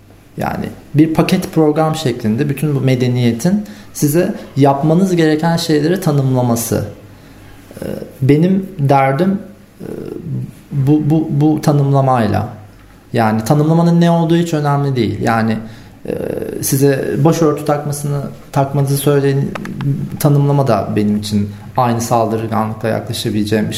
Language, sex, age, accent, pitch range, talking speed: Turkish, male, 40-59, native, 115-155 Hz, 100 wpm